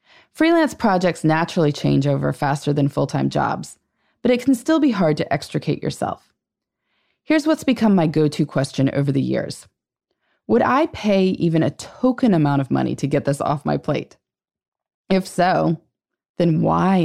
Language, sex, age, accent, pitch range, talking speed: English, female, 20-39, American, 145-220 Hz, 160 wpm